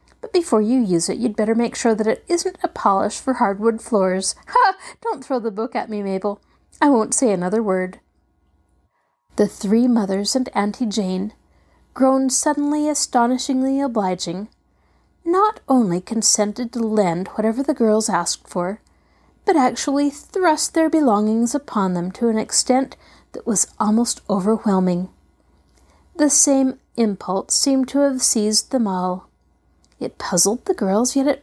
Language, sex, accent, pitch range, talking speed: English, female, American, 195-270 Hz, 150 wpm